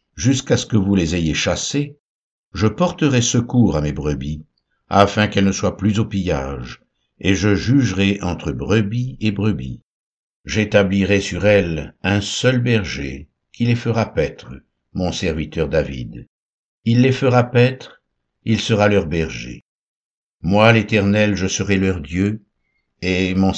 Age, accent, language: 60-79, French, French